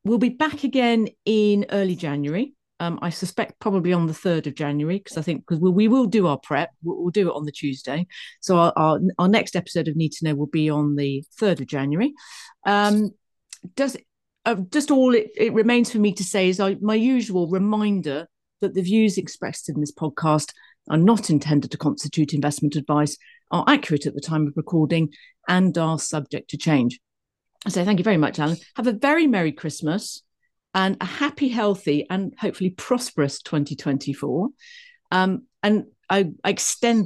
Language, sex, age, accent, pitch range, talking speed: English, female, 40-59, British, 155-220 Hz, 195 wpm